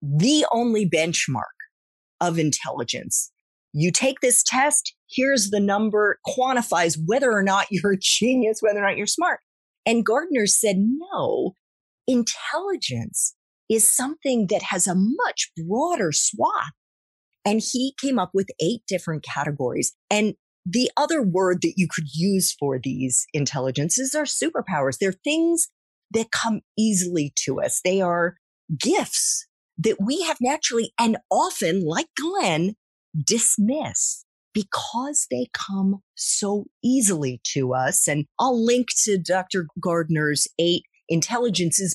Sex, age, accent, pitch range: female, 40-59, American, 170-250 Hz